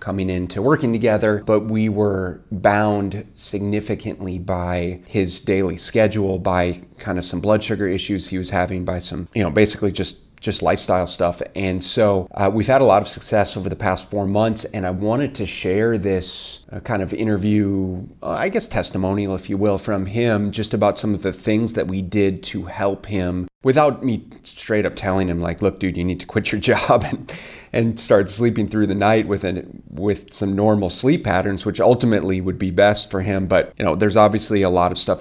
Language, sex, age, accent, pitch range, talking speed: English, male, 30-49, American, 95-105 Hz, 210 wpm